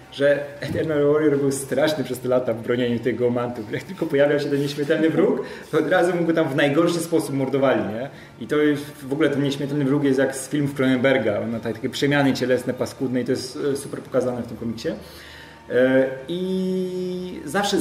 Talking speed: 190 wpm